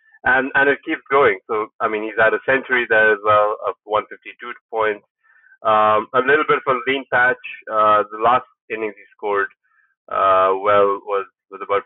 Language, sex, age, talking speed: English, male, 30-49, 185 wpm